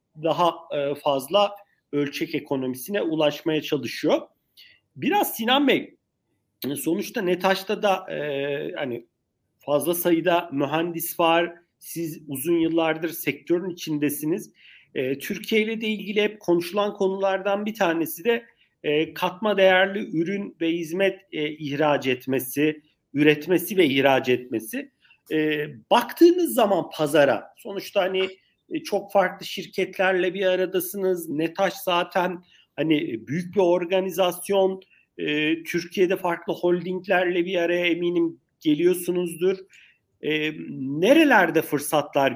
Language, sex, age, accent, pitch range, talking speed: Turkish, male, 50-69, native, 145-190 Hz, 105 wpm